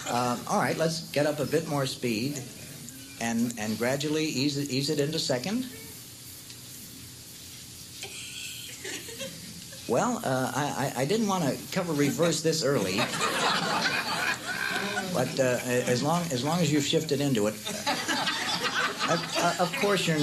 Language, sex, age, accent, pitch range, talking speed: English, male, 60-79, American, 125-165 Hz, 135 wpm